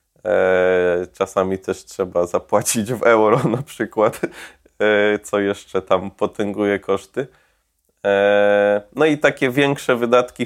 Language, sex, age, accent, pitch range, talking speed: Polish, male, 20-39, native, 100-115 Hz, 105 wpm